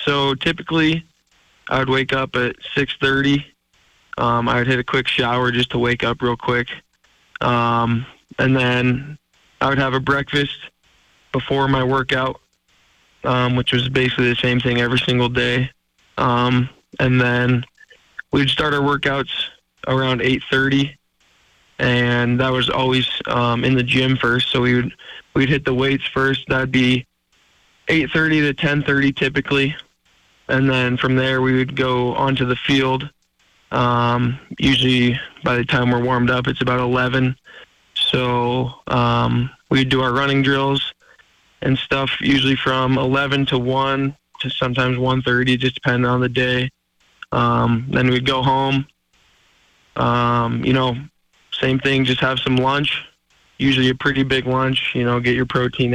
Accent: American